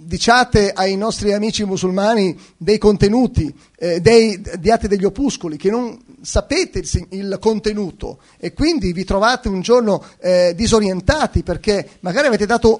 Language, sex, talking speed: Italian, male, 135 wpm